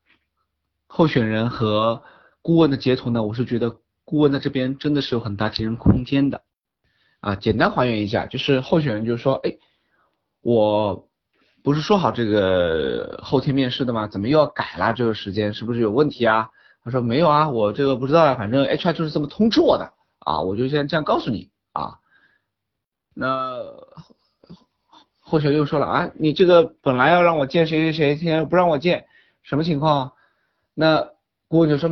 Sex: male